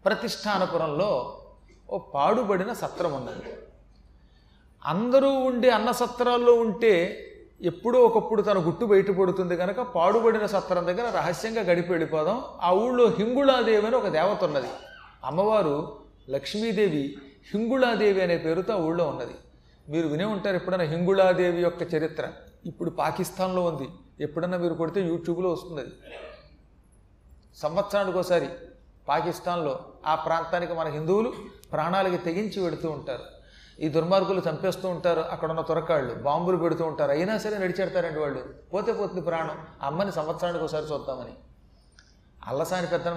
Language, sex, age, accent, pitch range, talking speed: Telugu, male, 40-59, native, 160-190 Hz, 120 wpm